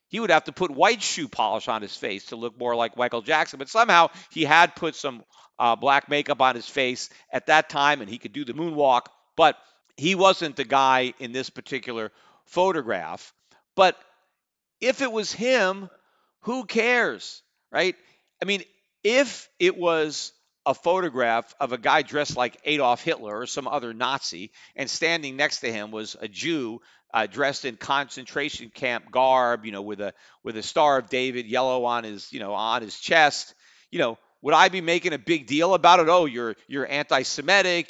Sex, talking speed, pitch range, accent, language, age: male, 190 wpm, 125-170 Hz, American, English, 50-69